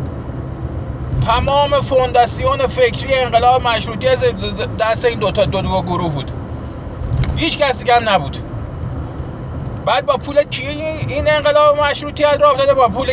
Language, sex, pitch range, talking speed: Persian, male, 215-265 Hz, 130 wpm